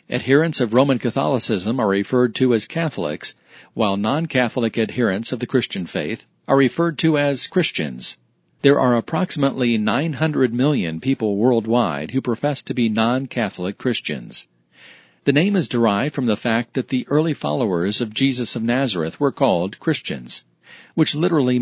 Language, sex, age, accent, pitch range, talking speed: English, male, 50-69, American, 115-140 Hz, 150 wpm